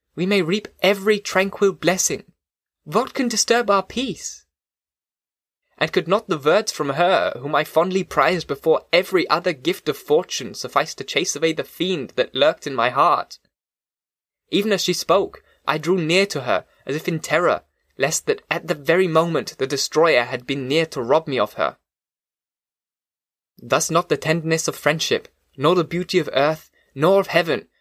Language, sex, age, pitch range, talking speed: English, male, 20-39, 140-185 Hz, 175 wpm